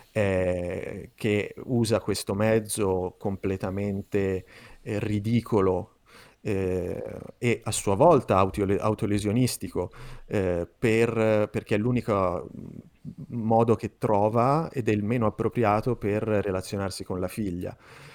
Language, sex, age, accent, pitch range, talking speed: Italian, male, 30-49, native, 95-115 Hz, 110 wpm